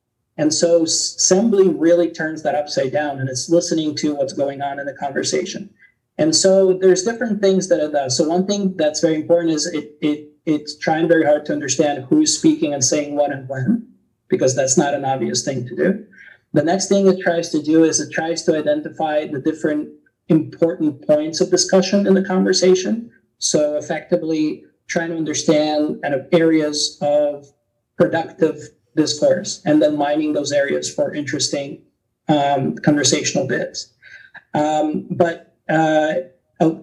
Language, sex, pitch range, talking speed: English, male, 150-180 Hz, 165 wpm